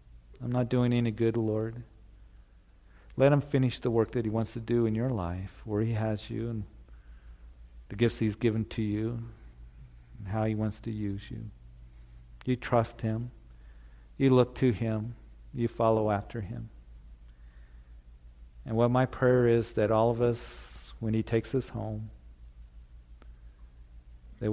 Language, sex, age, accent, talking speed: English, male, 50-69, American, 155 wpm